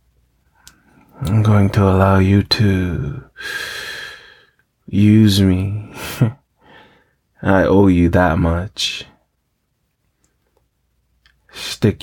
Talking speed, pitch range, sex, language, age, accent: 70 wpm, 85-105 Hz, male, English, 30-49, American